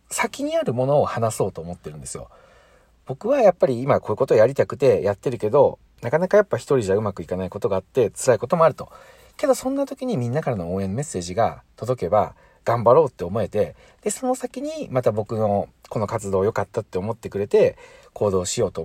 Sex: male